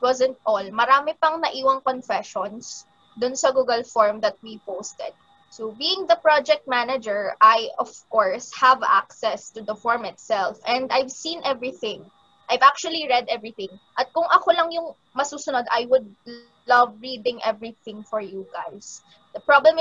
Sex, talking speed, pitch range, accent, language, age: female, 155 wpm, 230-295 Hz, native, Filipino, 20-39